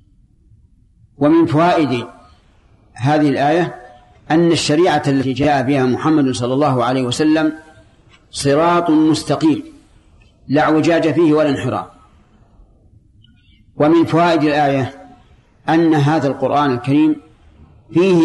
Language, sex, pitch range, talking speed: Arabic, male, 115-155 Hz, 95 wpm